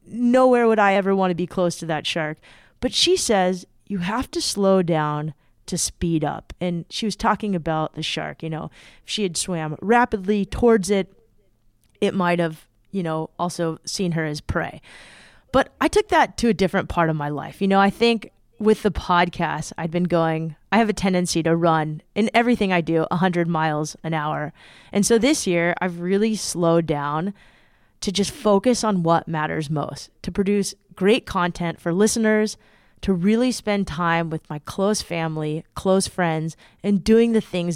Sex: female